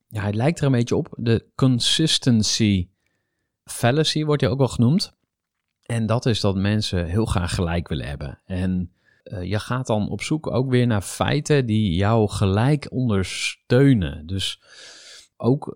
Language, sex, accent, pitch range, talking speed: Dutch, male, Dutch, 105-140 Hz, 160 wpm